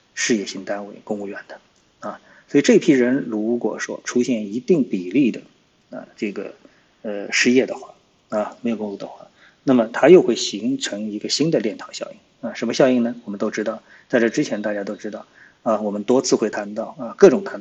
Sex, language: male, Chinese